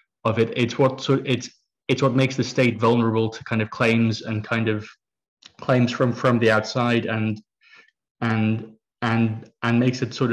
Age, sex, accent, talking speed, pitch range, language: 20-39, male, British, 175 wpm, 110-125 Hz, English